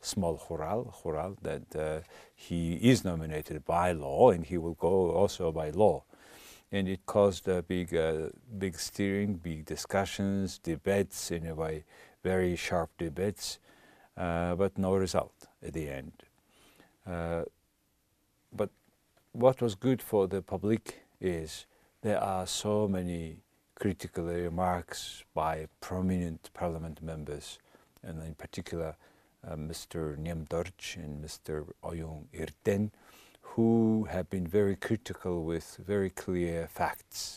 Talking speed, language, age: 125 wpm, English, 60-79